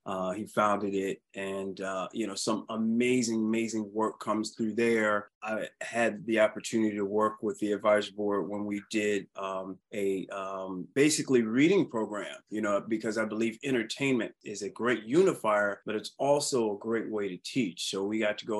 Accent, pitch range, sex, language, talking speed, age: American, 105-115 Hz, male, English, 185 wpm, 30-49